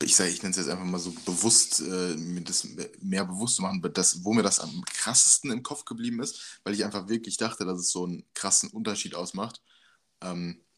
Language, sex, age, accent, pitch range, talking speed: German, male, 20-39, German, 85-105 Hz, 225 wpm